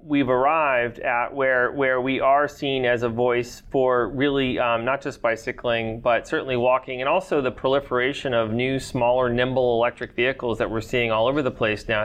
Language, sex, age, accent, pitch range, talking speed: English, male, 30-49, American, 120-145 Hz, 190 wpm